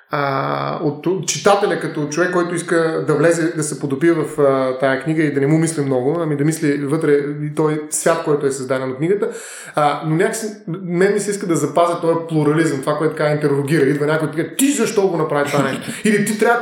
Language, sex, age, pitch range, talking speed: Bulgarian, male, 20-39, 150-205 Hz, 220 wpm